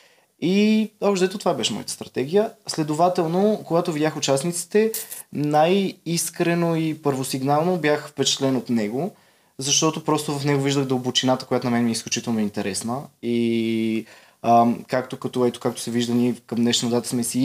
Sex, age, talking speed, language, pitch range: male, 20-39, 150 wpm, Bulgarian, 120-165 Hz